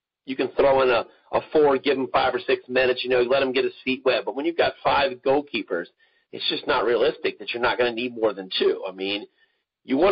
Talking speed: 260 wpm